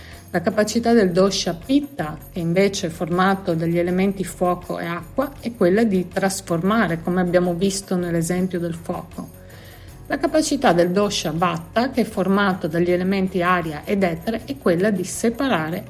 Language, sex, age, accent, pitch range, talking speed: Italian, female, 50-69, native, 175-225 Hz, 155 wpm